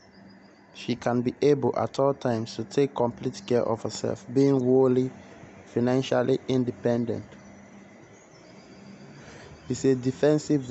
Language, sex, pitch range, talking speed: English, male, 105-135 Hz, 110 wpm